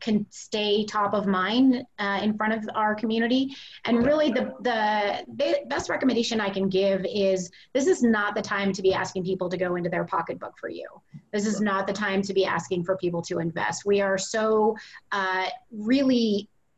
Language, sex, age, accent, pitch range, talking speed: English, female, 30-49, American, 200-245 Hz, 195 wpm